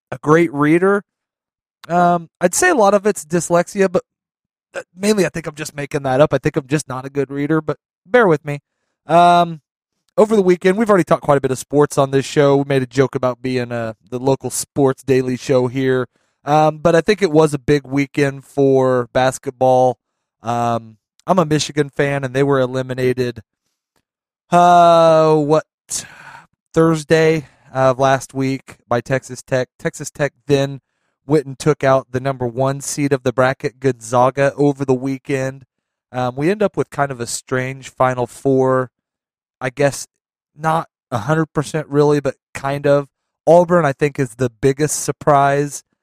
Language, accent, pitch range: English, American, 130-155 Hz